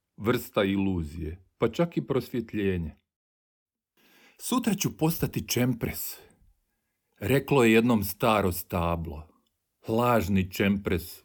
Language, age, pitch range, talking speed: Croatian, 50-69, 85-120 Hz, 90 wpm